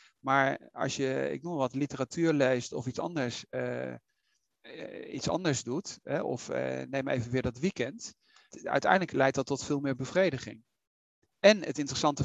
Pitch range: 140-175 Hz